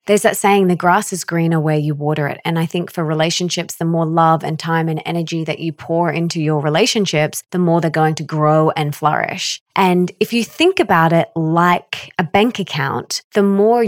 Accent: Australian